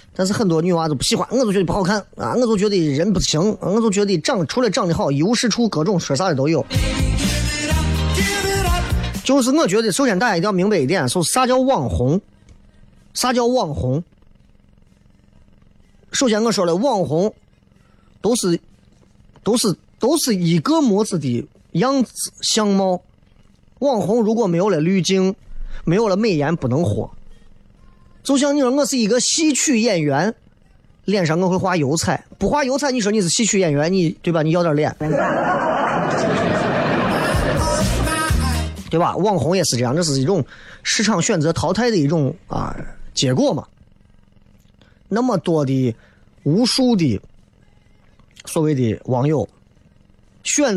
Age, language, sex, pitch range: 30-49, Chinese, male, 145-225 Hz